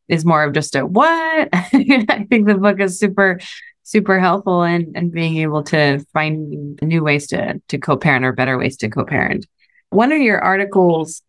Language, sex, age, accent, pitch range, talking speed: English, female, 20-39, American, 150-180 Hz, 180 wpm